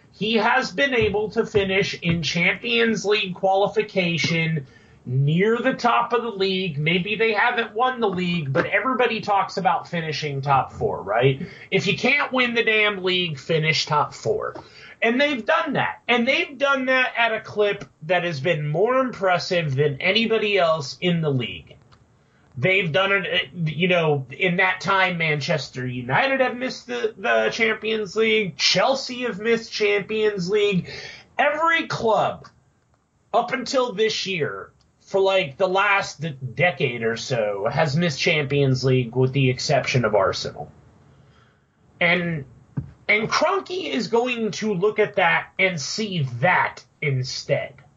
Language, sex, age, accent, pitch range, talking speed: English, male, 30-49, American, 155-225 Hz, 150 wpm